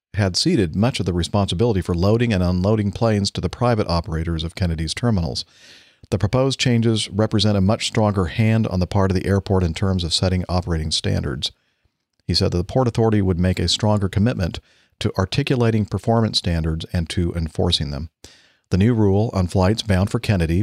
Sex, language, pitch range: male, English, 85-105 Hz